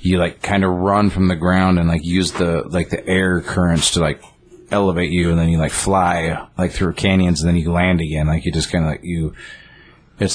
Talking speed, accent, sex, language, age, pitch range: 240 wpm, American, male, English, 30-49, 85-100 Hz